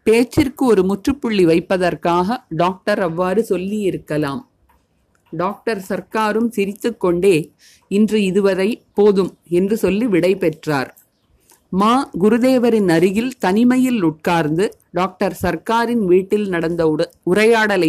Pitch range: 170-220 Hz